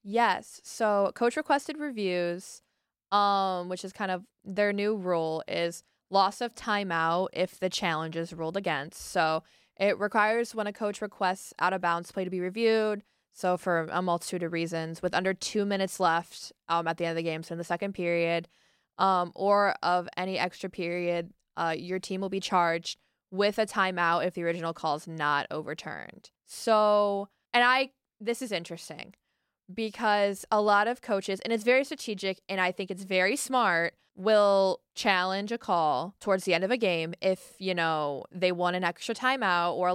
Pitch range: 175-210 Hz